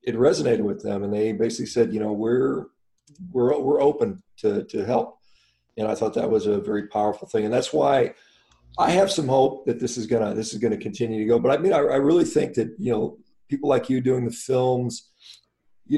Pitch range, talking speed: 115-135 Hz, 235 wpm